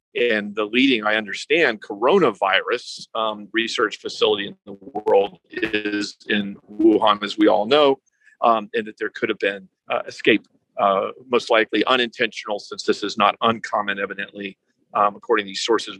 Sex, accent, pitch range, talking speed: male, American, 105-125 Hz, 160 wpm